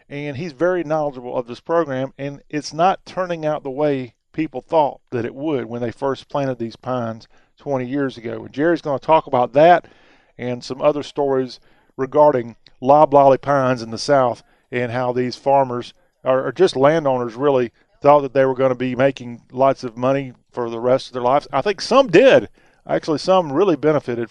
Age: 40-59